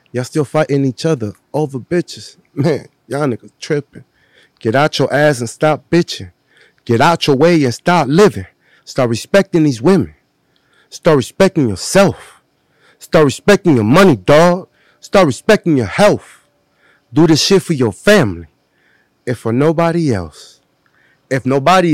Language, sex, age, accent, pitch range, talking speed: English, male, 30-49, American, 115-165 Hz, 145 wpm